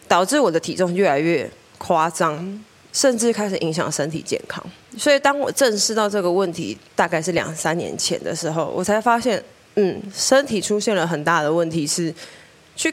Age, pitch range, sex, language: 20-39, 170-220 Hz, female, Chinese